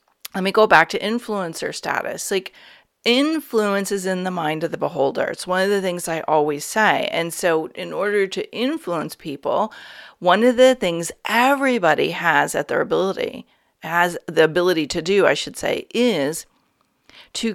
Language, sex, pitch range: English, female, 175-230 Hz